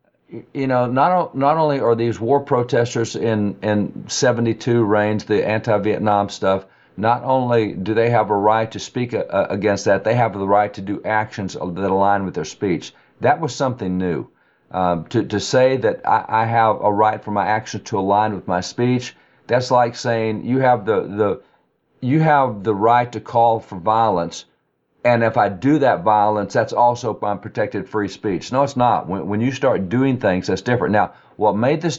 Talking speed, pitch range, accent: 195 wpm, 100-120 Hz, American